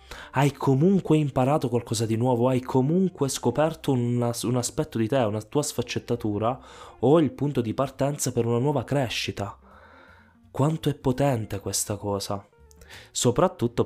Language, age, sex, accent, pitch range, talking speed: Italian, 20-39, male, native, 105-135 Hz, 140 wpm